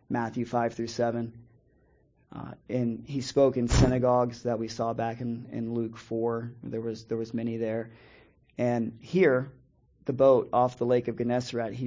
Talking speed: 170 wpm